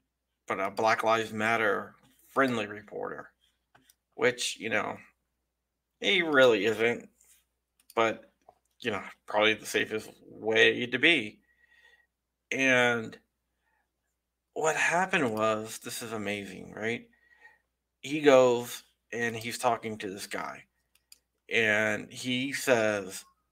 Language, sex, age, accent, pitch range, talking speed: English, male, 50-69, American, 105-160 Hz, 105 wpm